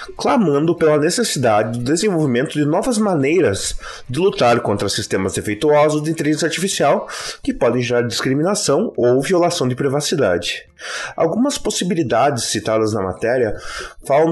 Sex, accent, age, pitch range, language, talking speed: male, Brazilian, 30-49, 125-165 Hz, Portuguese, 125 wpm